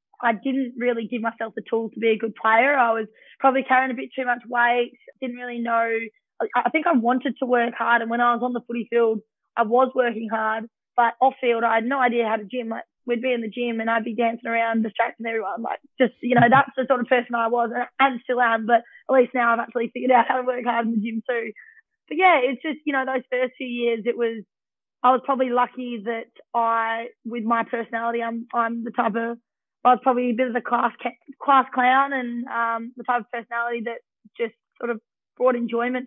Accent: Australian